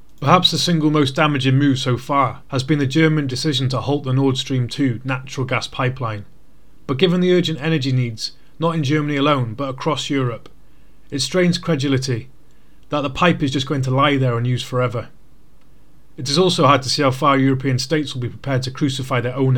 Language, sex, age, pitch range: English, male, 30-49, 125-150 Hz